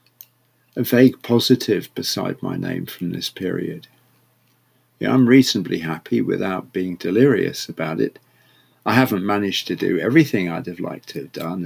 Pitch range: 90-125 Hz